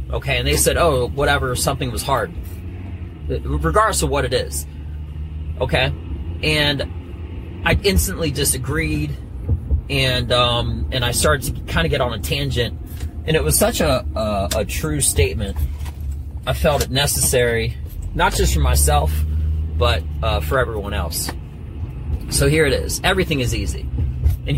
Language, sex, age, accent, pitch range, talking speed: English, male, 30-49, American, 75-90 Hz, 150 wpm